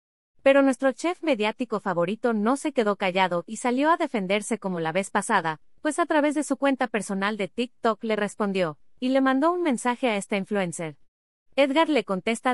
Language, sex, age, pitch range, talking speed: Spanish, female, 30-49, 195-265 Hz, 185 wpm